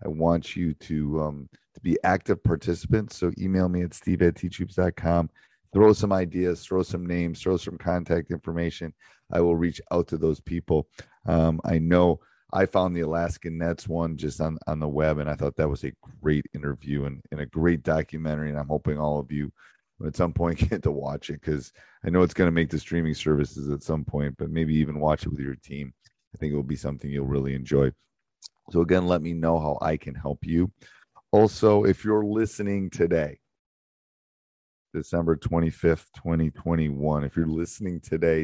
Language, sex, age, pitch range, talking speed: English, male, 30-49, 75-85 Hz, 195 wpm